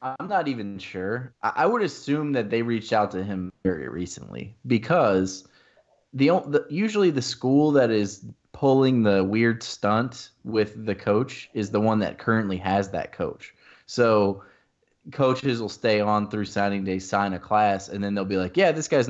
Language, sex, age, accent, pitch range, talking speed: English, male, 20-39, American, 95-110 Hz, 180 wpm